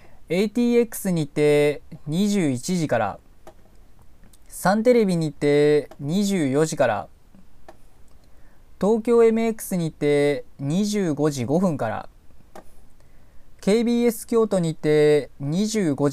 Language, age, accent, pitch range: Japanese, 20-39, native, 145-195 Hz